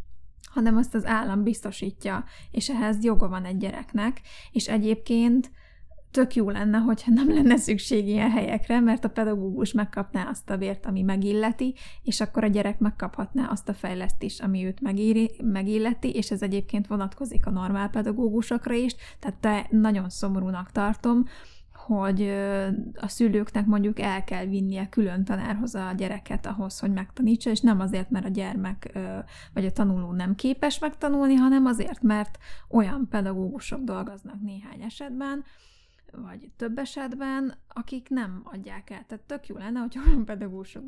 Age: 20-39